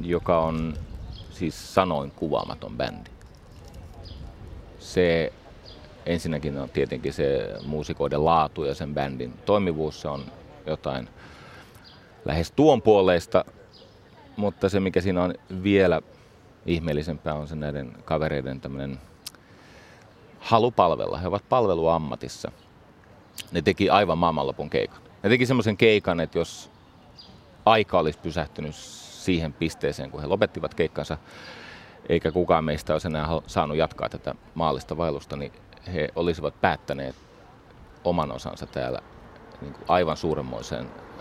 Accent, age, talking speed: native, 30-49, 120 wpm